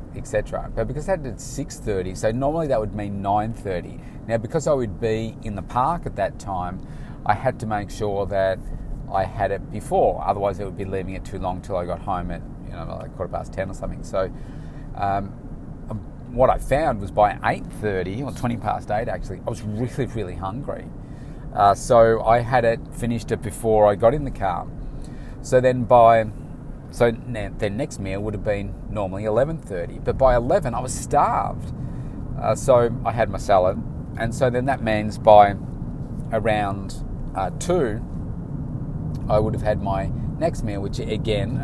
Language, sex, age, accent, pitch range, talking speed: English, male, 30-49, Australian, 100-125 Hz, 190 wpm